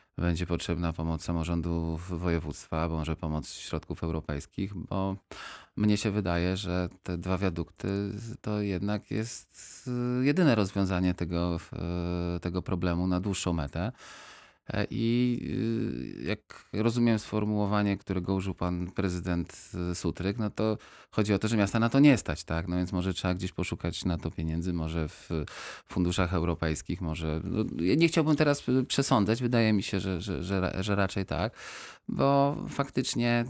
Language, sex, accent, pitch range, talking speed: Polish, male, native, 85-105 Hz, 140 wpm